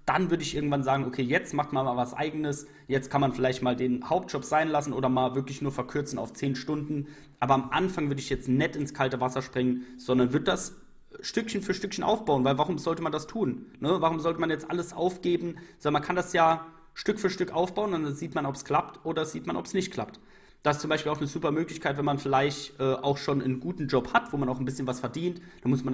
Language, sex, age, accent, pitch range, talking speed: German, male, 30-49, German, 130-165 Hz, 255 wpm